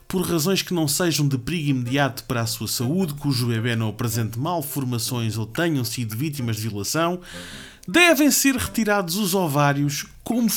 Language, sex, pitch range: Portuguese, male, 135-180 Hz